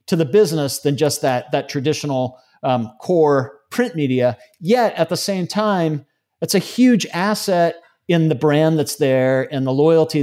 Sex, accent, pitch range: male, American, 135-165 Hz